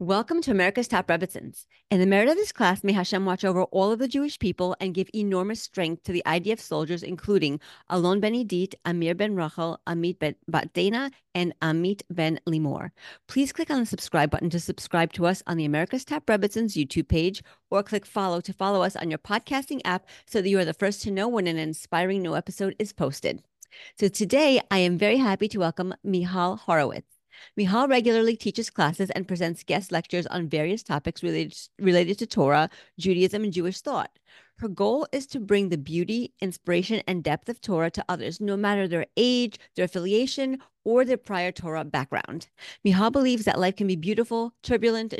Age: 40-59